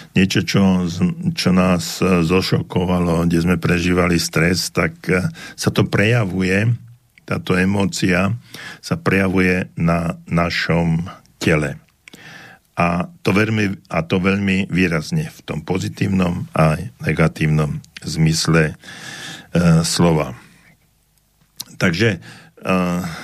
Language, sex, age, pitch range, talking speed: Slovak, male, 50-69, 85-120 Hz, 95 wpm